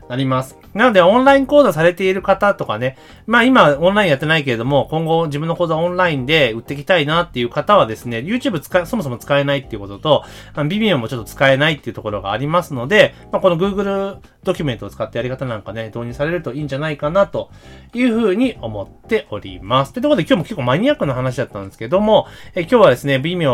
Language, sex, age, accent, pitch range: Japanese, male, 30-49, native, 115-180 Hz